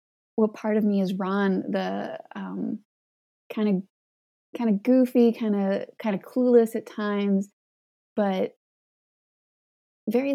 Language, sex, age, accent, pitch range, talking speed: English, female, 20-39, American, 195-235 Hz, 120 wpm